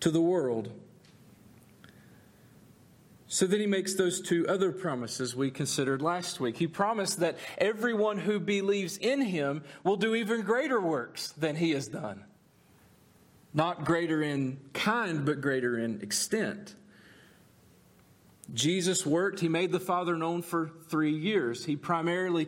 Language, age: English, 40-59